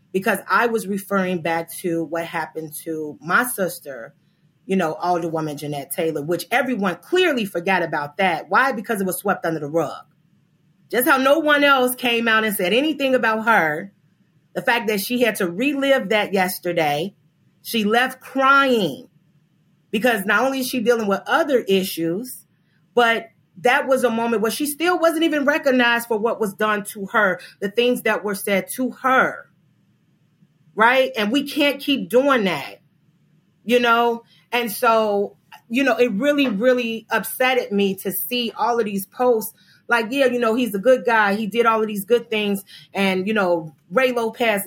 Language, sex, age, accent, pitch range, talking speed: English, female, 30-49, American, 175-240 Hz, 175 wpm